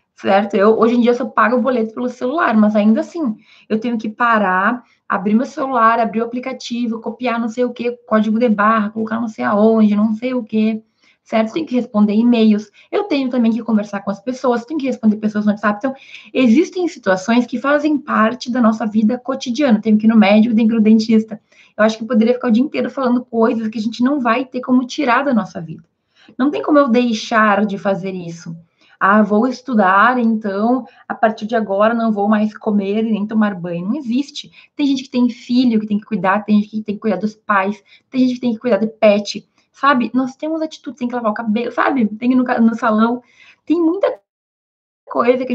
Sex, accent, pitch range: female, Brazilian, 215-255 Hz